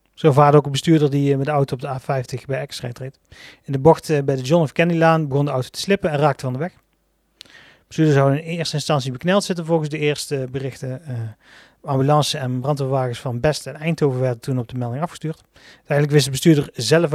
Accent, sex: Dutch, male